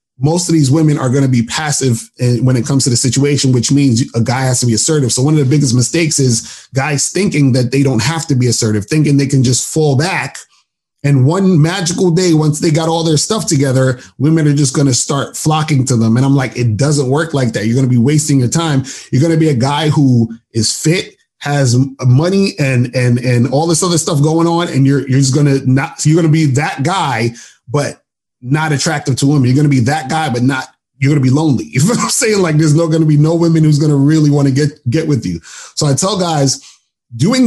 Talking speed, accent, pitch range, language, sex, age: 255 wpm, American, 125-155 Hz, English, male, 20-39